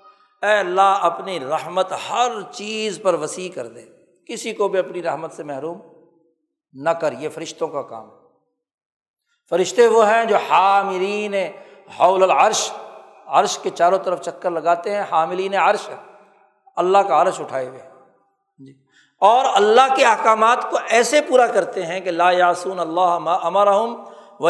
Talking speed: 150 wpm